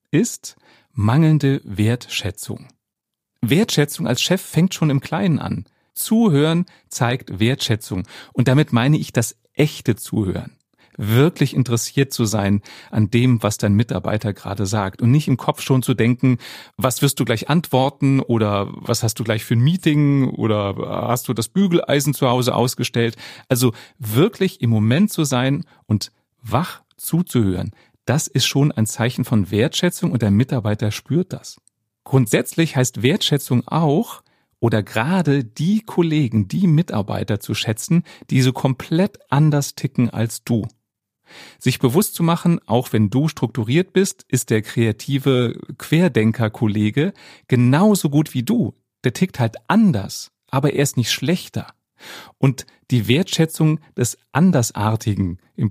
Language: German